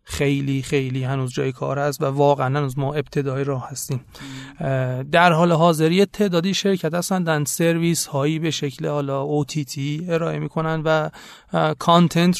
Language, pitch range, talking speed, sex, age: Persian, 135-155 Hz, 145 wpm, male, 30-49